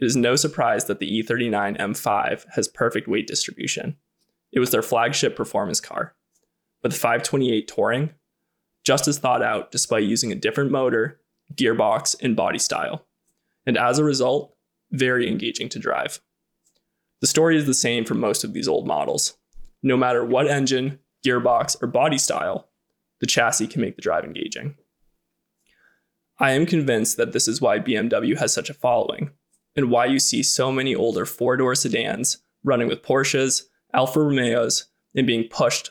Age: 20-39